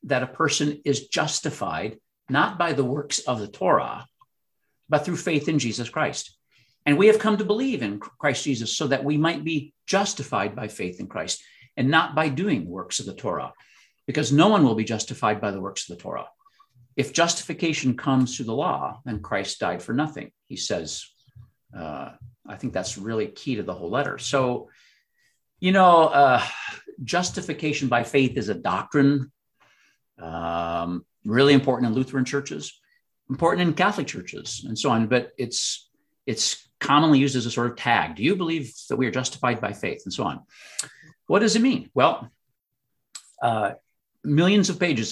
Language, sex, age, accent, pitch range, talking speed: English, male, 50-69, American, 120-160 Hz, 180 wpm